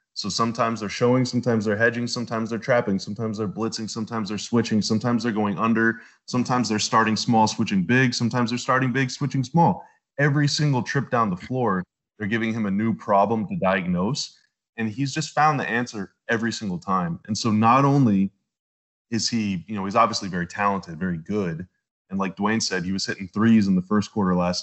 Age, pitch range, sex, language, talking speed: 20-39, 100-120 Hz, male, English, 200 wpm